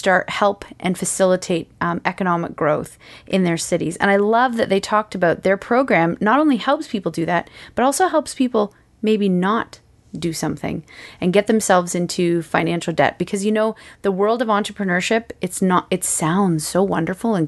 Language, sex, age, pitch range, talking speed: English, female, 30-49, 170-205 Hz, 180 wpm